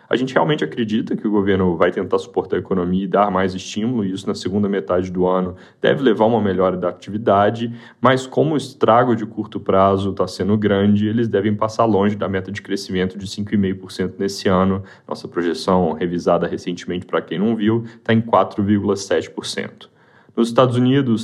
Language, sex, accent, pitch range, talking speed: Portuguese, male, Brazilian, 95-110 Hz, 185 wpm